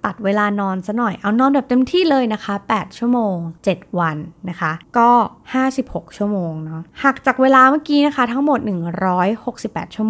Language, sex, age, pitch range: Thai, female, 20-39, 175-245 Hz